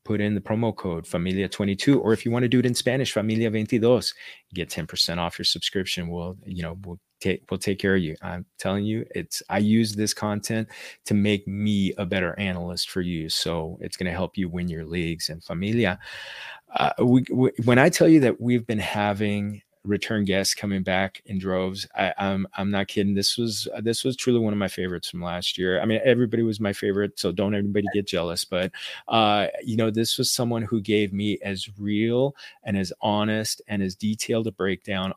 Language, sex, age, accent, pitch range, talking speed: English, male, 30-49, American, 95-115 Hz, 210 wpm